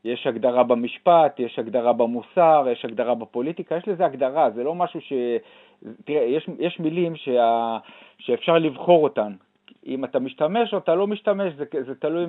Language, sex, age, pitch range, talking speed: Hebrew, male, 50-69, 140-190 Hz, 165 wpm